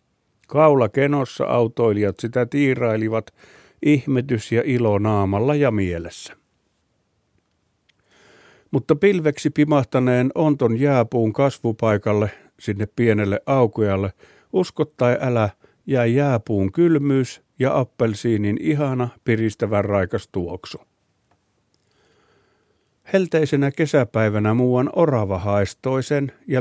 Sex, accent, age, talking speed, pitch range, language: male, native, 50-69, 90 wpm, 105-135 Hz, Finnish